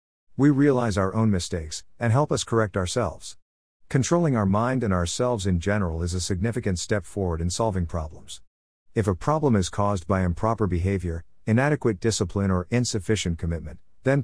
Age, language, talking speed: 50-69, English, 165 wpm